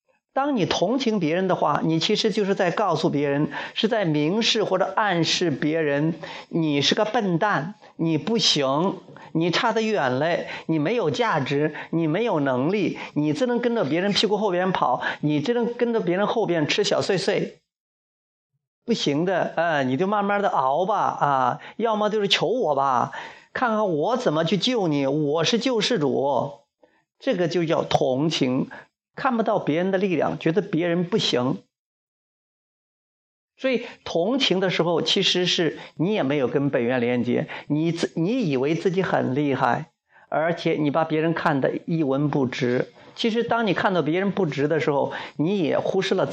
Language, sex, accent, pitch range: Chinese, male, native, 150-215 Hz